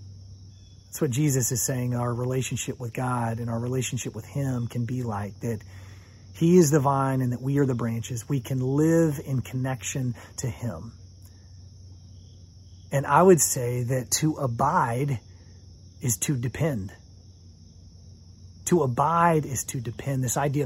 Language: English